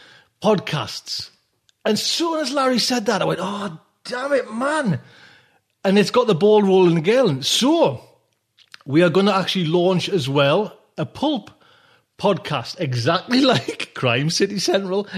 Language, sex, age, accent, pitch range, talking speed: English, male, 40-59, British, 140-195 Hz, 145 wpm